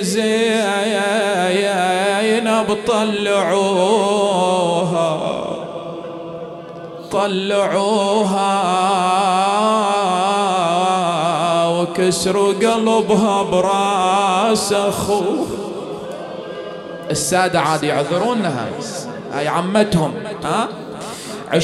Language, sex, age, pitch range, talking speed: English, male, 30-49, 185-225 Hz, 40 wpm